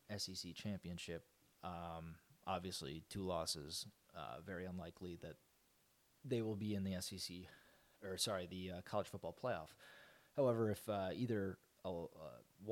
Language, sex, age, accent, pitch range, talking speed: English, male, 30-49, American, 85-105 Hz, 135 wpm